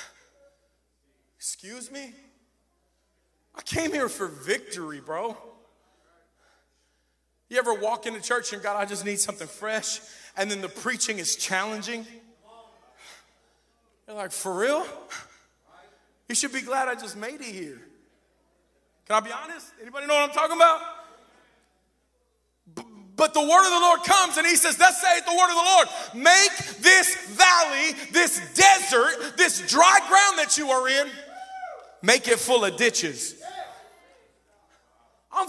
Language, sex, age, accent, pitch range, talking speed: English, male, 40-59, American, 250-360 Hz, 145 wpm